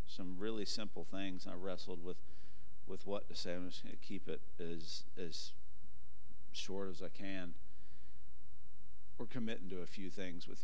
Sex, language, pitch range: male, English, 85-105 Hz